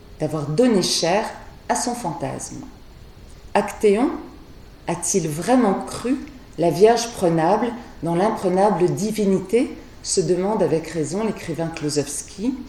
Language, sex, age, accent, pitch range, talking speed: French, female, 40-59, French, 160-230 Hz, 105 wpm